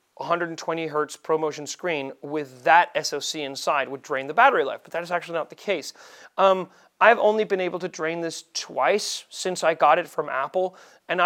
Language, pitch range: English, 145-175 Hz